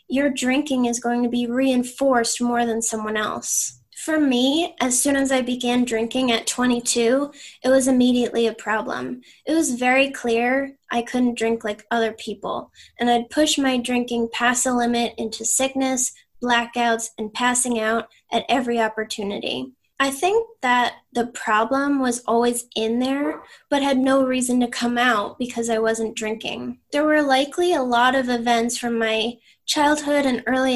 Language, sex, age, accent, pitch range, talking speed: English, female, 10-29, American, 230-260 Hz, 165 wpm